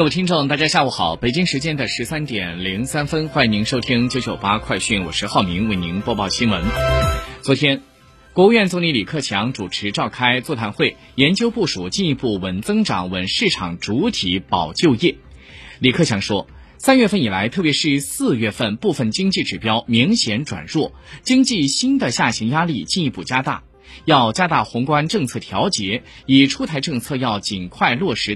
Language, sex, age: Chinese, male, 20-39